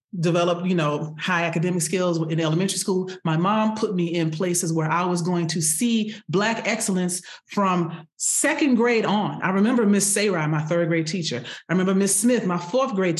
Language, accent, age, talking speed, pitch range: English, American, 30-49, 190 wpm, 170-215 Hz